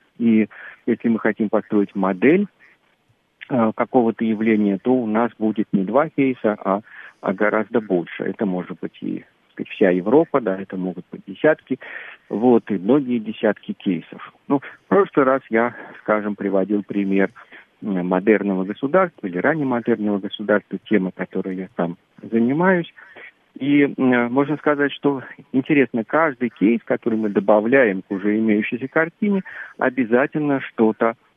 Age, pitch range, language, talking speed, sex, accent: 50-69, 100-130 Hz, Russian, 130 wpm, male, native